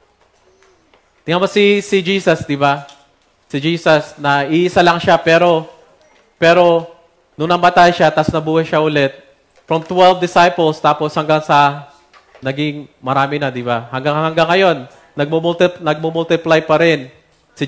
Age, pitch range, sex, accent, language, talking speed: 20-39, 135-170 Hz, male, native, Filipino, 140 wpm